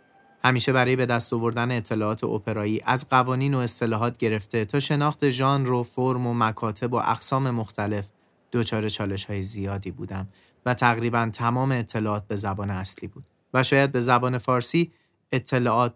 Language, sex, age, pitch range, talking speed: Persian, male, 30-49, 105-130 Hz, 150 wpm